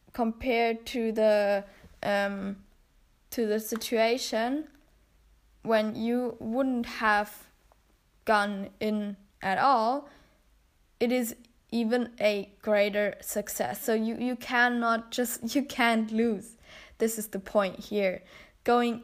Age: 10-29